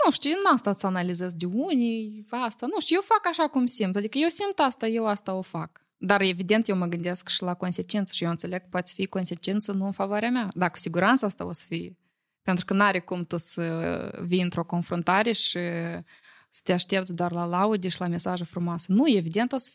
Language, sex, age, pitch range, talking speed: Romanian, female, 20-39, 180-230 Hz, 230 wpm